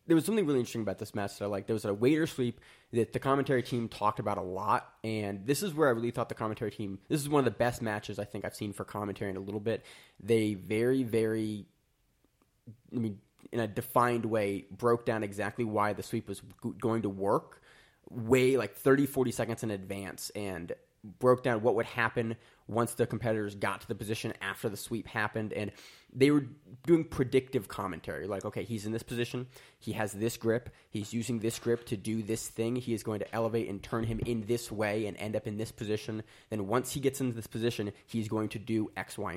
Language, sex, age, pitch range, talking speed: English, male, 20-39, 105-125 Hz, 225 wpm